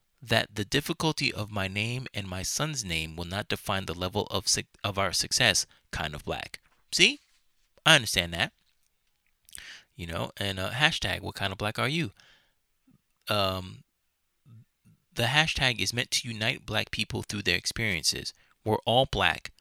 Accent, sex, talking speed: American, male, 160 wpm